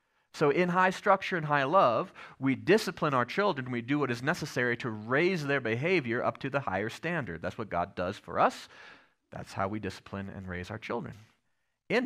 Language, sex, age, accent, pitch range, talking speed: English, male, 30-49, American, 110-150 Hz, 200 wpm